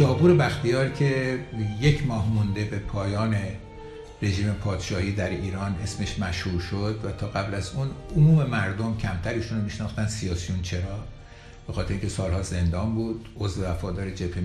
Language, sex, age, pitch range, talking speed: English, male, 60-79, 85-105 Hz, 145 wpm